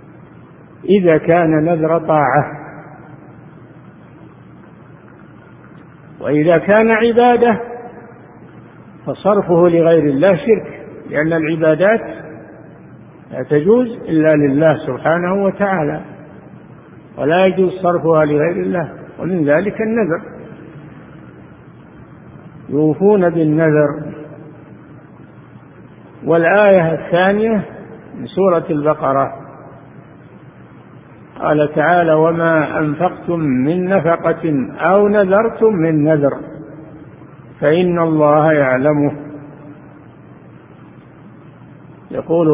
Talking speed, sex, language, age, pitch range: 70 wpm, male, Arabic, 50-69, 150-175 Hz